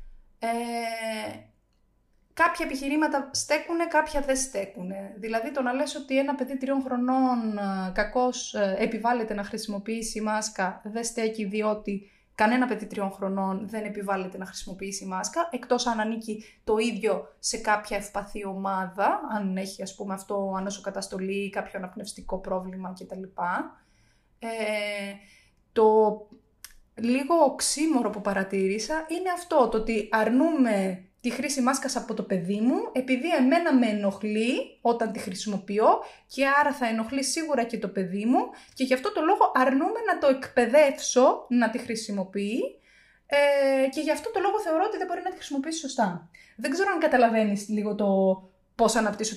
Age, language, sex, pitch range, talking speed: 20-39, Greek, female, 200-270 Hz, 140 wpm